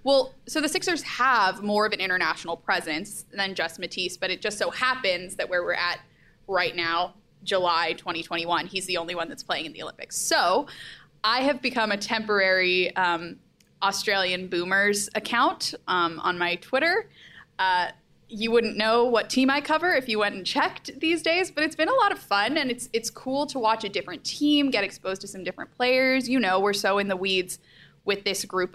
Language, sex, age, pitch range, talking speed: English, female, 10-29, 185-265 Hz, 200 wpm